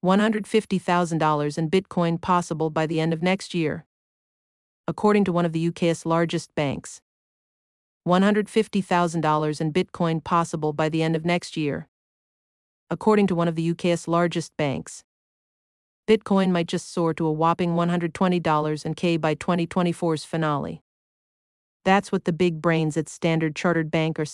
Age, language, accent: 40-59, English, American